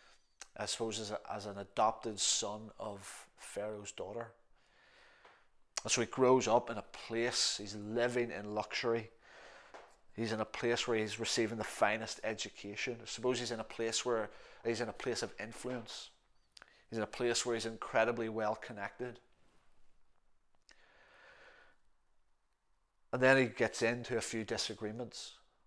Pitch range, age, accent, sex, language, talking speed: 105-120 Hz, 30-49, British, male, English, 145 wpm